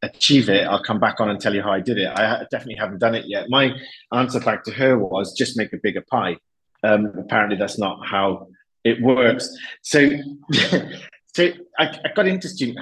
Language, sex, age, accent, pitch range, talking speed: English, male, 30-49, British, 95-120 Hz, 205 wpm